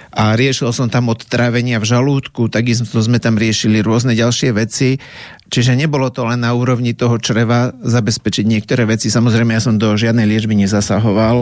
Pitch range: 115-125 Hz